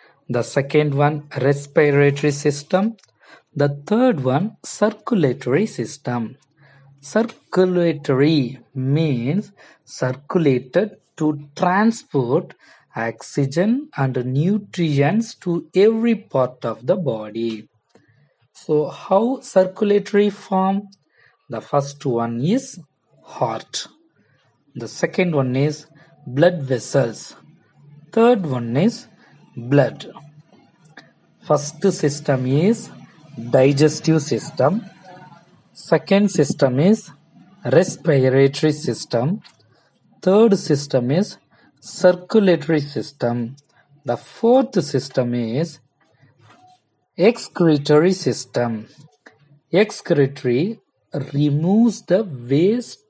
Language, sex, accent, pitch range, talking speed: Tamil, male, native, 135-185 Hz, 80 wpm